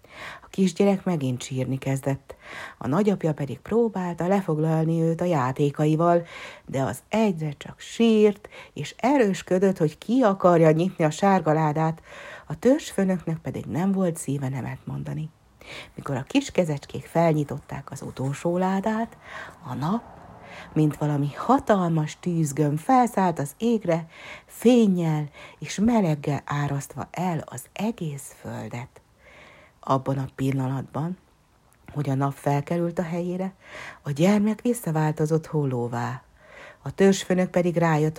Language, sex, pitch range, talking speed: Hungarian, female, 140-185 Hz, 120 wpm